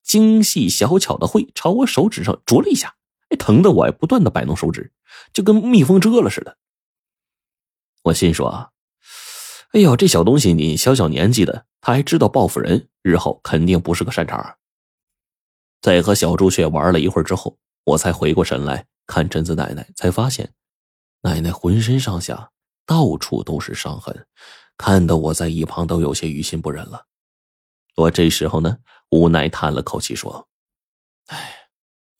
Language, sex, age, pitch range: Chinese, male, 20-39, 80-135 Hz